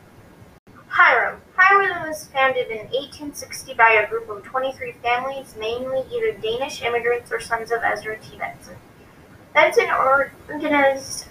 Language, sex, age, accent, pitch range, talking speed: English, female, 20-39, American, 235-305 Hz, 125 wpm